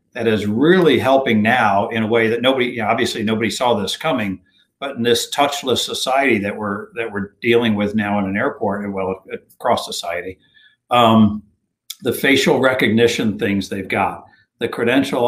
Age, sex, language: 60-79, male, English